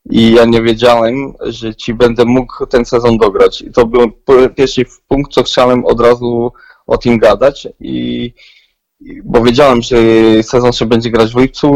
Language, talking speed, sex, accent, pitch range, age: Polish, 170 wpm, male, native, 115-130 Hz, 20-39